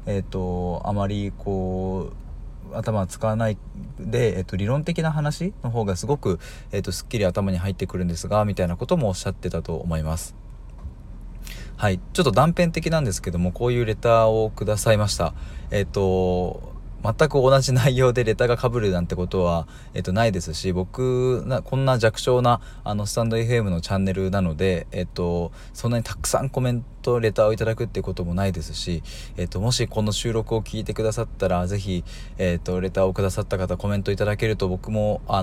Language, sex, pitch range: Japanese, male, 90-115 Hz